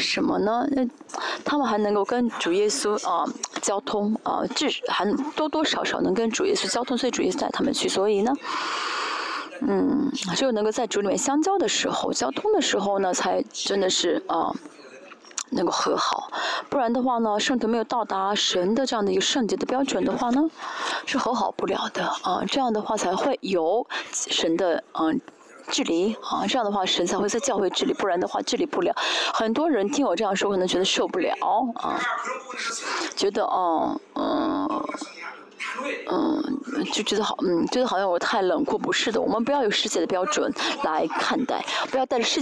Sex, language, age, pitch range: female, Chinese, 20-39, 210-305 Hz